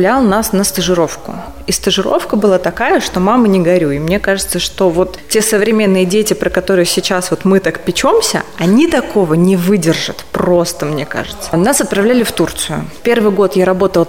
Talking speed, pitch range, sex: 170 wpm, 185-225 Hz, female